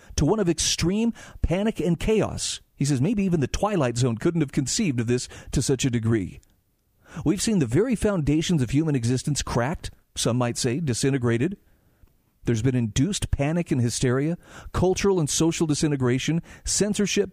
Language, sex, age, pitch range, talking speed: English, male, 50-69, 125-170 Hz, 165 wpm